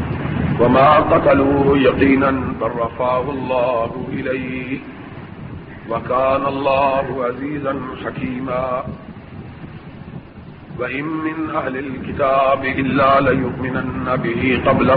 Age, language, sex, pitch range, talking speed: 50-69, Urdu, male, 120-135 Hz, 70 wpm